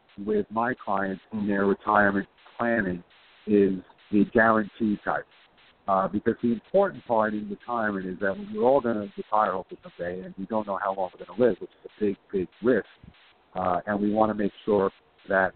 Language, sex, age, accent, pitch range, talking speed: English, male, 50-69, American, 100-120 Hz, 195 wpm